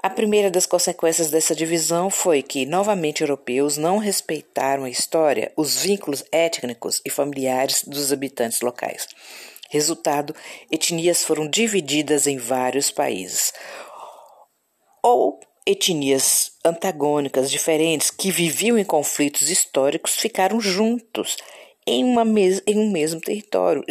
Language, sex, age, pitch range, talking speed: Portuguese, female, 40-59, 140-190 Hz, 120 wpm